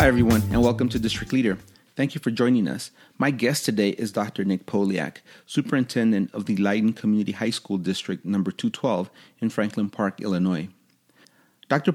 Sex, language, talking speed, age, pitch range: male, English, 170 wpm, 30-49, 105-130 Hz